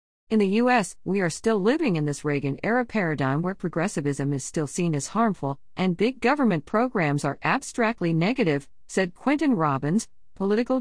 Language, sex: English, female